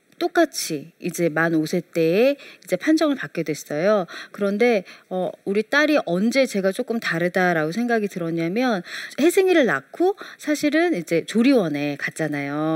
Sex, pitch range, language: female, 165-240 Hz, Korean